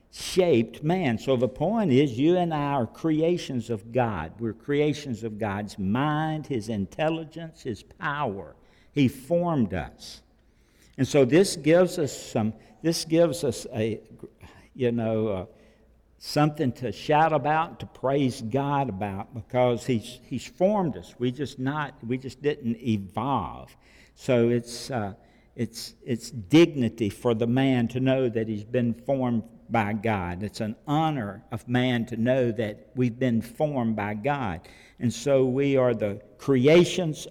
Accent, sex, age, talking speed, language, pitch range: American, male, 60-79, 150 wpm, English, 115-145 Hz